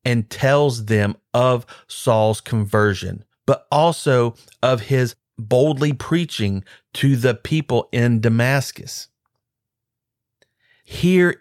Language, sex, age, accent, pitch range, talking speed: English, male, 40-59, American, 115-145 Hz, 95 wpm